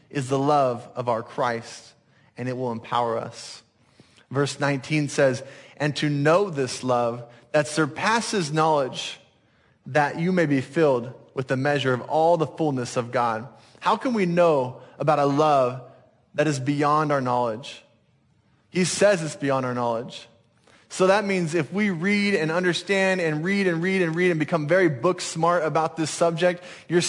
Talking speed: 170 wpm